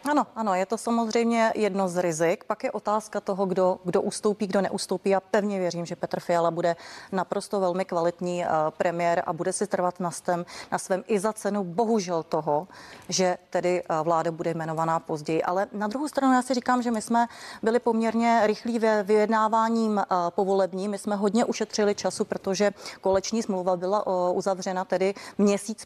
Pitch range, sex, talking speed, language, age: 185-220 Hz, female, 180 wpm, Czech, 30-49